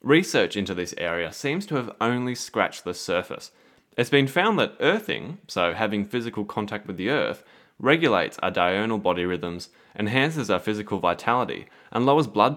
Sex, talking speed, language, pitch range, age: male, 165 wpm, English, 95-130 Hz, 20-39